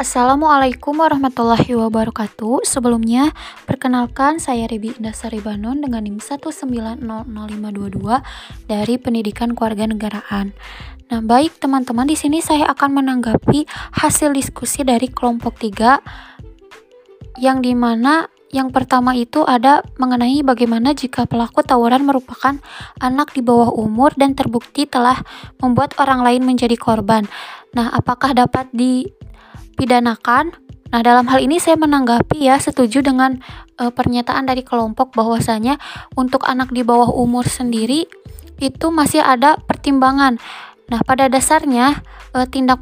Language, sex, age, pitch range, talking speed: Indonesian, female, 20-39, 240-280 Hz, 120 wpm